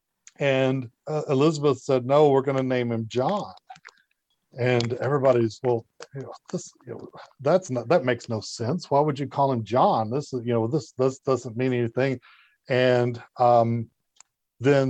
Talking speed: 175 wpm